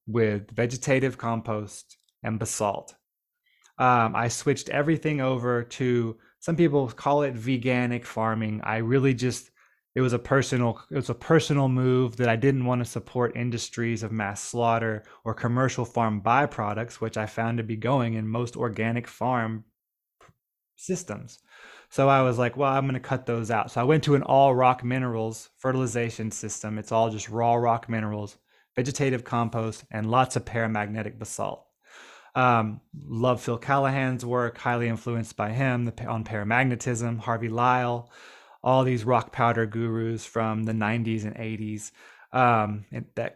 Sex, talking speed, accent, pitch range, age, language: male, 155 wpm, American, 110-130 Hz, 20-39, English